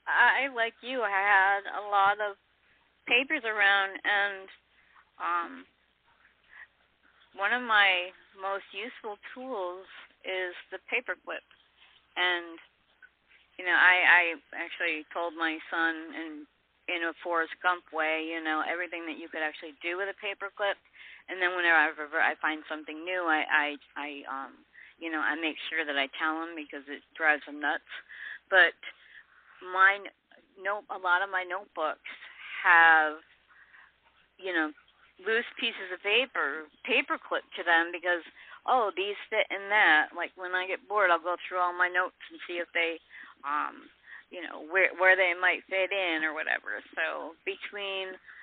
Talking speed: 155 wpm